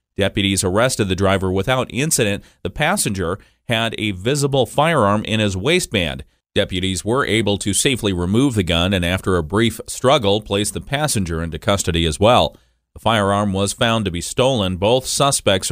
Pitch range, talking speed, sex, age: 95-125 Hz, 170 wpm, male, 30-49